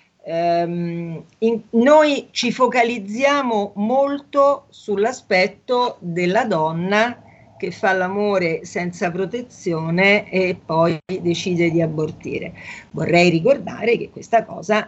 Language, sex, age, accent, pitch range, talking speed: Italian, female, 50-69, native, 165-215 Hz, 90 wpm